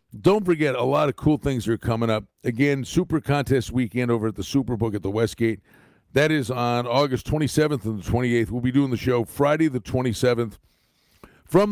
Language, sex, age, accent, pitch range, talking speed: English, male, 50-69, American, 110-140 Hz, 195 wpm